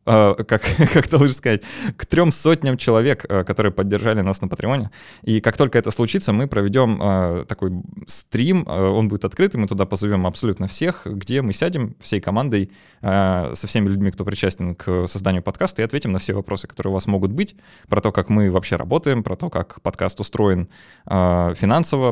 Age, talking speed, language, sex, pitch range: 20-39, 180 wpm, Russian, male, 95-120 Hz